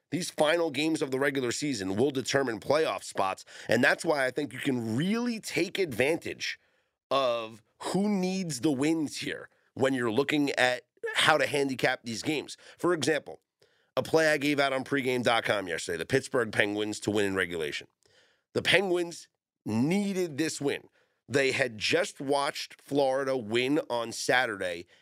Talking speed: 160 wpm